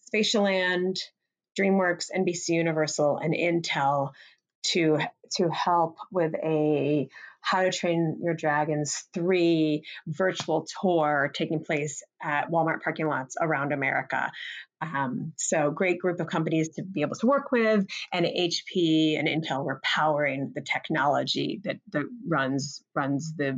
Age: 30-49